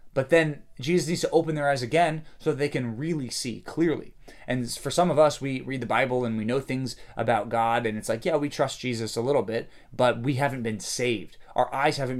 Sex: male